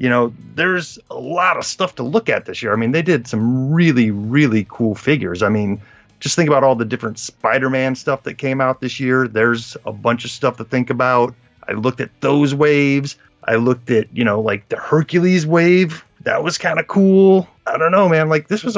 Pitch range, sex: 110-150 Hz, male